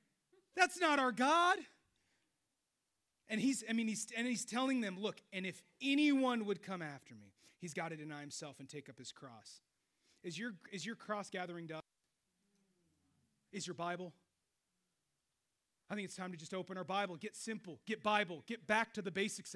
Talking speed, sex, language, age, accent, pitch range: 180 wpm, male, English, 30-49, American, 200-280 Hz